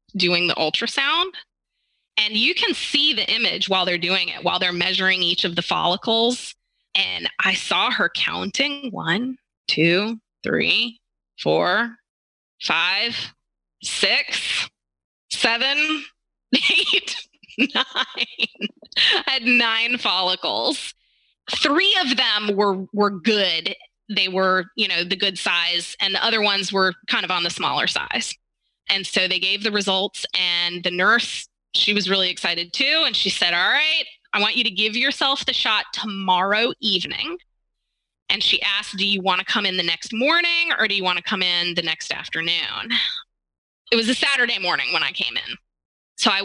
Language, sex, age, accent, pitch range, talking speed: English, female, 20-39, American, 185-260 Hz, 160 wpm